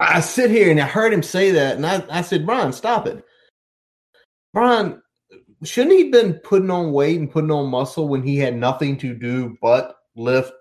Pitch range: 120-160 Hz